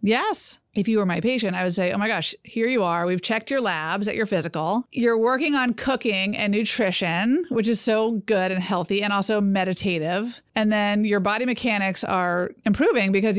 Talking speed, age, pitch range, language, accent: 200 wpm, 30-49, 180-220 Hz, English, American